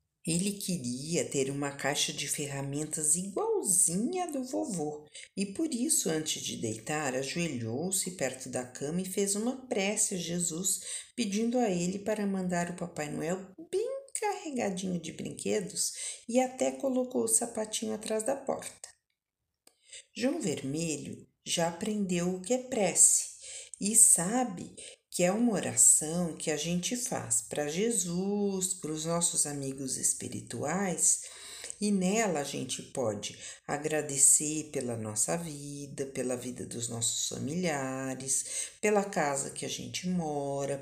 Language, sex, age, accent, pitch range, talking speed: Portuguese, female, 50-69, Brazilian, 145-220 Hz, 135 wpm